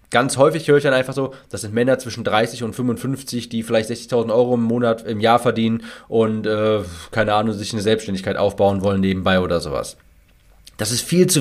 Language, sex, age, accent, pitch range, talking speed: German, male, 30-49, German, 110-150 Hz, 205 wpm